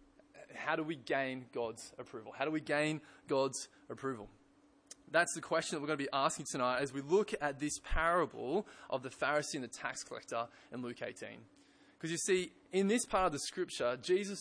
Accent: Australian